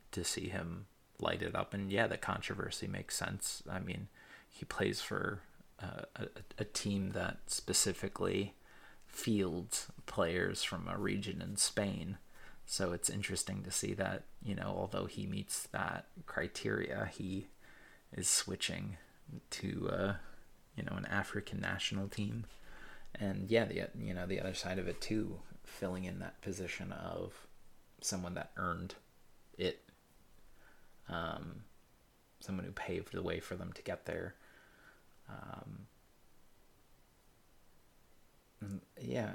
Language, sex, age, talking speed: English, male, 30-49, 135 wpm